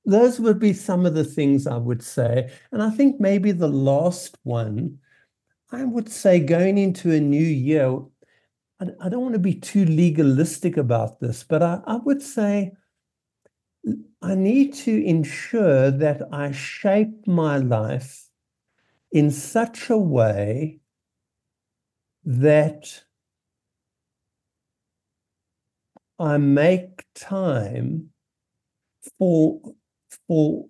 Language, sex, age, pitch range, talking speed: English, male, 60-79, 145-220 Hz, 110 wpm